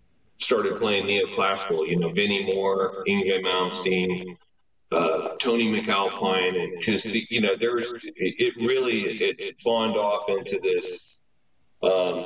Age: 40-59